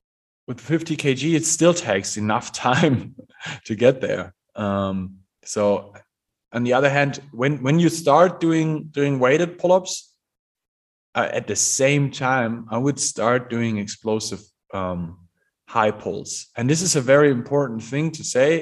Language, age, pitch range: English, 30-49, 105-140 Hz